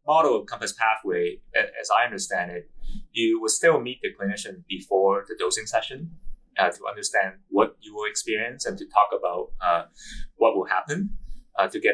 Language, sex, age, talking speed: English, male, 20-39, 180 wpm